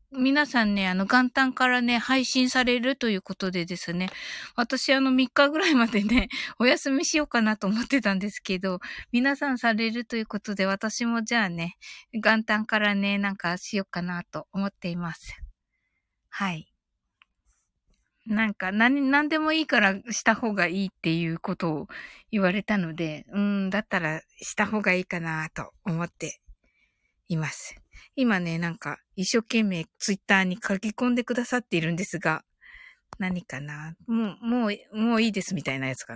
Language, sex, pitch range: Japanese, female, 180-255 Hz